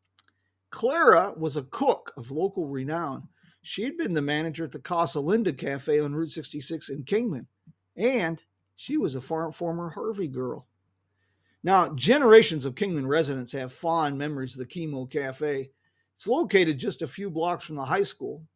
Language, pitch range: English, 140-200 Hz